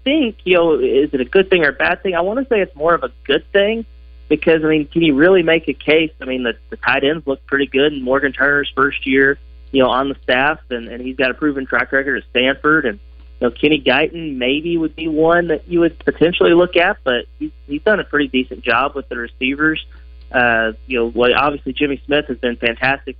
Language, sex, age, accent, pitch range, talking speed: English, male, 30-49, American, 125-155 Hz, 245 wpm